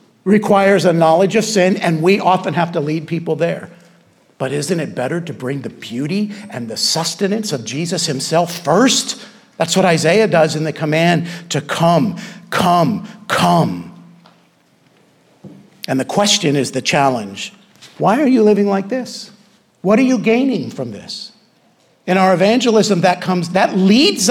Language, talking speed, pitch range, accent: English, 160 wpm, 170-230 Hz, American